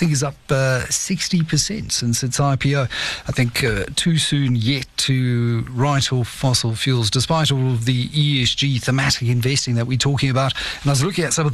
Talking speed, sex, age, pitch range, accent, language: 180 wpm, male, 50-69, 125-155 Hz, British, English